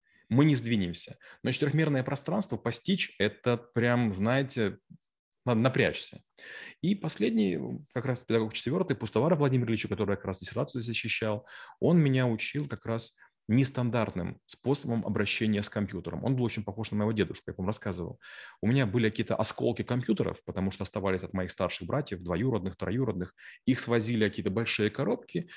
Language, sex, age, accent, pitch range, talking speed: Russian, male, 30-49, native, 105-140 Hz, 160 wpm